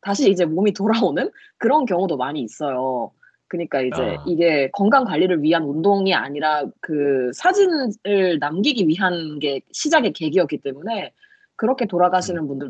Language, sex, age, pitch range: Japanese, female, 20-39, 150-250 Hz